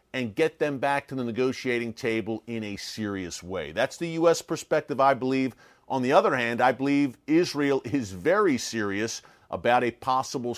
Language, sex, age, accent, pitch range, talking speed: English, male, 40-59, American, 115-150 Hz, 175 wpm